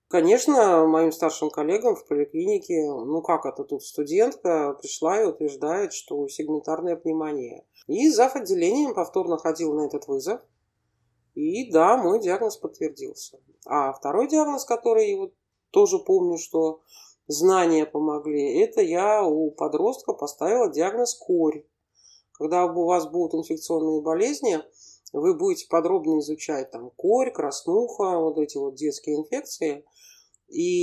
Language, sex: Russian, male